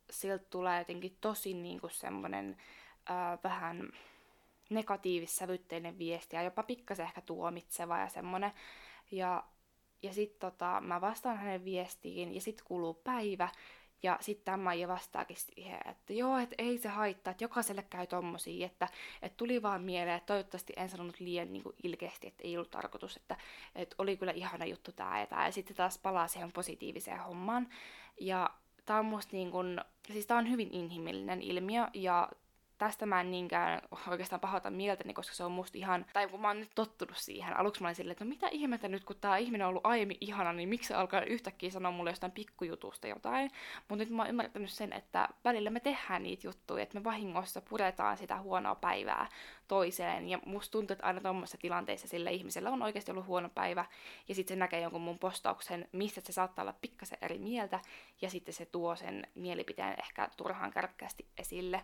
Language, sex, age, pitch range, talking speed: Finnish, female, 20-39, 175-210 Hz, 185 wpm